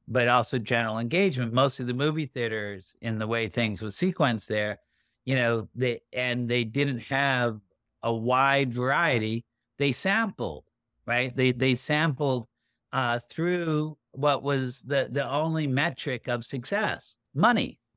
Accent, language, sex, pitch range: American, English, male, 115-150 Hz